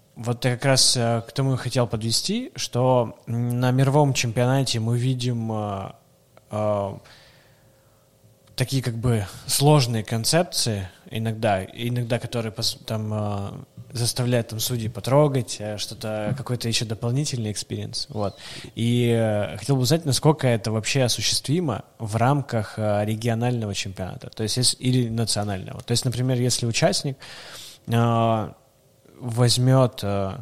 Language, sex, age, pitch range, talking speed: Russian, male, 20-39, 110-130 Hz, 125 wpm